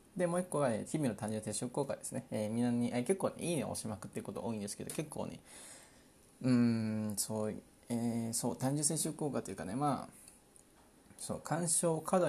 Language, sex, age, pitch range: Japanese, male, 20-39, 110-140 Hz